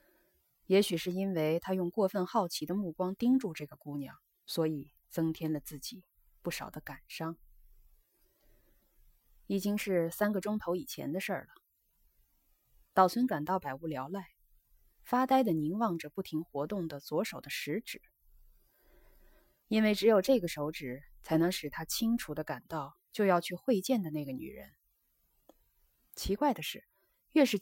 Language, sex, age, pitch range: Chinese, female, 20-39, 155-205 Hz